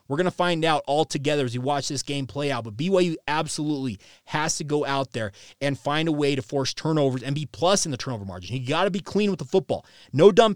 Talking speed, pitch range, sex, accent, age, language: 260 wpm, 130-170 Hz, male, American, 30-49, English